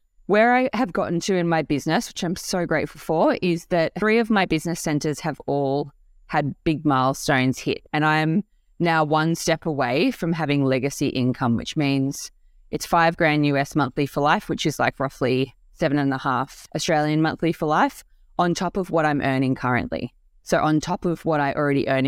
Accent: Australian